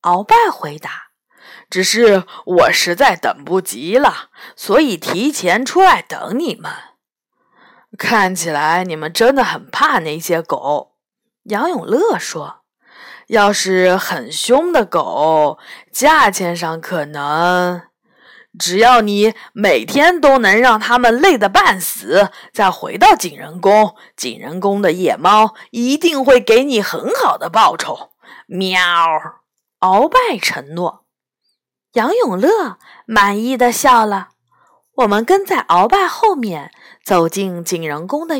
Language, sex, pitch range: Chinese, female, 180-270 Hz